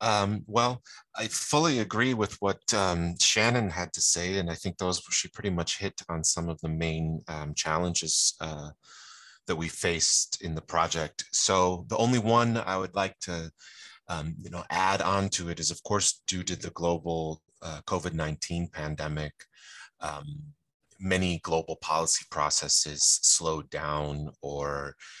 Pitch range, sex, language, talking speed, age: 80-95 Hz, male, English, 160 wpm, 30-49